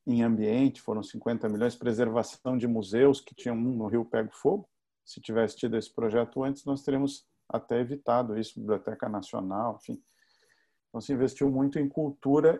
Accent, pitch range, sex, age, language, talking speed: Brazilian, 115-145 Hz, male, 50-69, Portuguese, 160 wpm